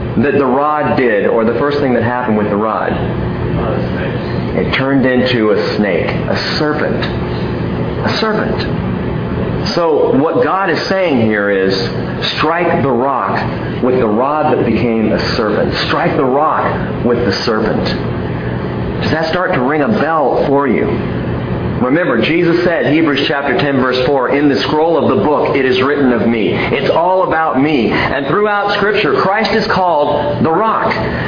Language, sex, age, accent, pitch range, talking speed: English, male, 40-59, American, 110-170 Hz, 165 wpm